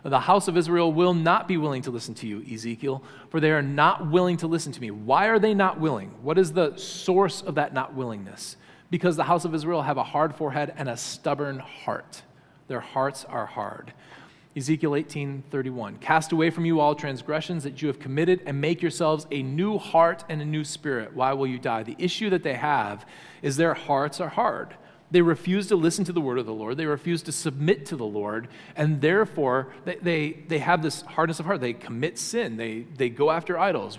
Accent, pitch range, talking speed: American, 140-175 Hz, 215 wpm